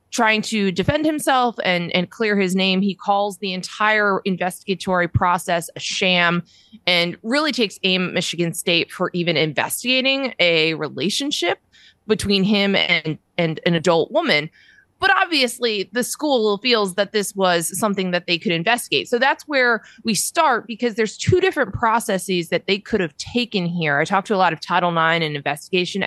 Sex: female